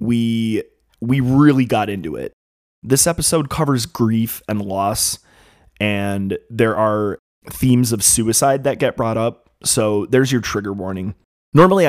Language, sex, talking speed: English, male, 140 wpm